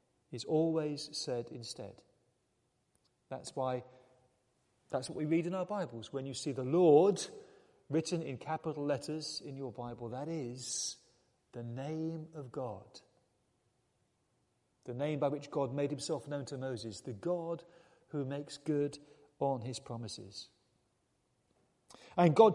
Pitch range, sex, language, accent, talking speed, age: 135-225 Hz, male, English, British, 135 wpm, 40-59